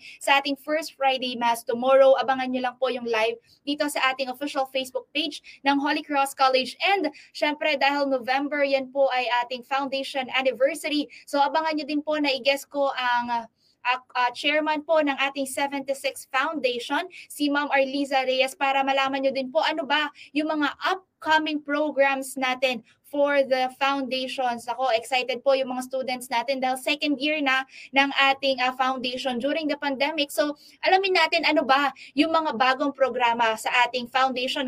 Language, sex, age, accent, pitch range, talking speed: Filipino, female, 20-39, native, 260-300 Hz, 170 wpm